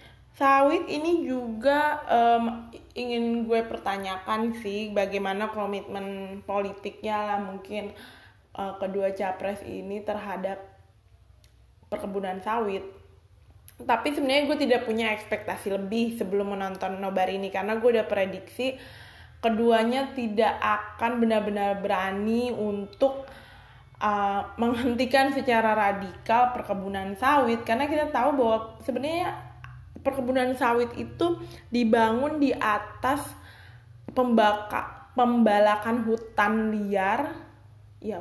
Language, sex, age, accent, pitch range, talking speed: Indonesian, female, 20-39, native, 195-255 Hz, 100 wpm